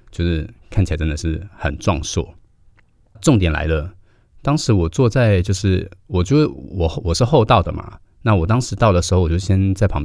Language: Chinese